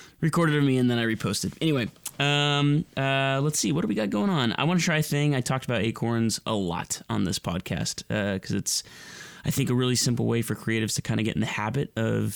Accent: American